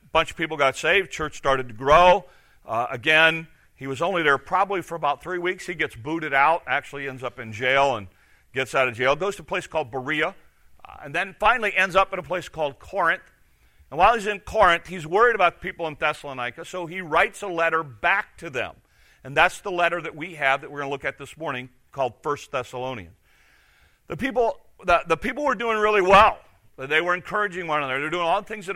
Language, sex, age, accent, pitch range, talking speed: English, male, 50-69, American, 135-180 Hz, 225 wpm